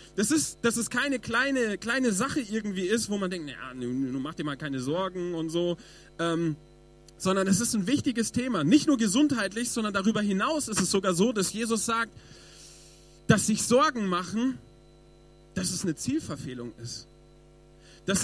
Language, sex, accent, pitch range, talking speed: German, male, German, 170-235 Hz, 175 wpm